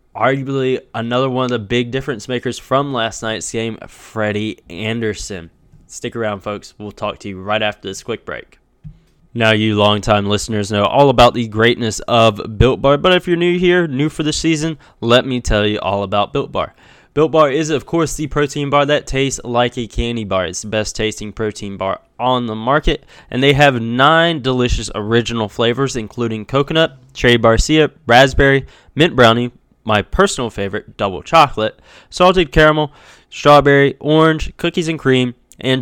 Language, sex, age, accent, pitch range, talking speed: English, male, 10-29, American, 110-140 Hz, 175 wpm